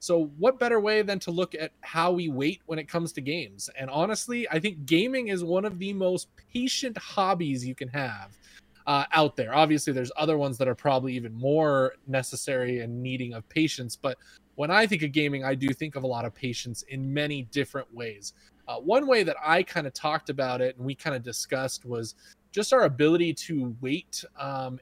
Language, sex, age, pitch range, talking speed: English, male, 20-39, 125-160 Hz, 215 wpm